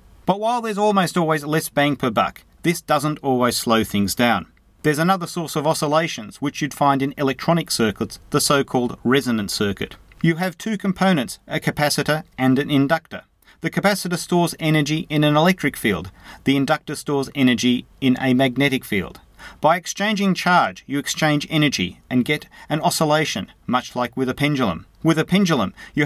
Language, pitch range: English, 125-160 Hz